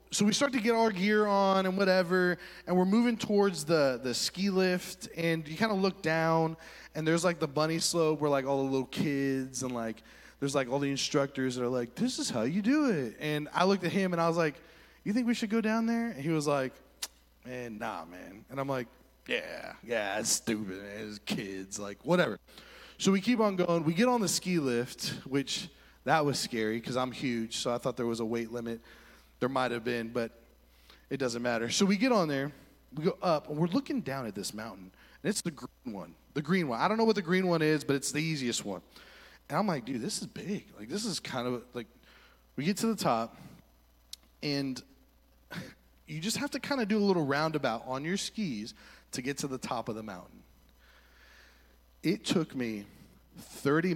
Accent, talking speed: American, 225 wpm